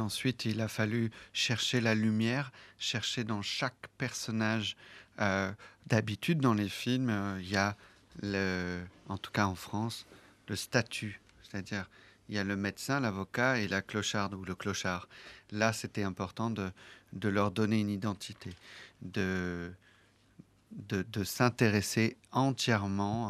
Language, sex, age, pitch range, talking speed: Italian, male, 40-59, 95-110 Hz, 140 wpm